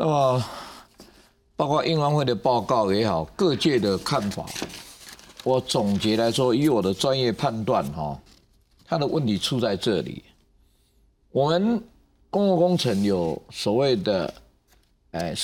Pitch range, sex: 115-175 Hz, male